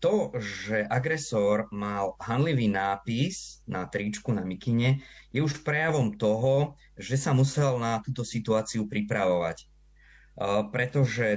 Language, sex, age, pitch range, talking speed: Slovak, male, 20-39, 105-130 Hz, 115 wpm